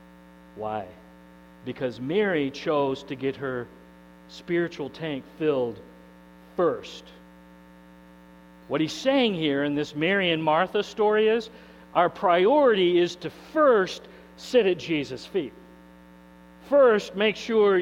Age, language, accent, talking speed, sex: 50-69, English, American, 115 wpm, male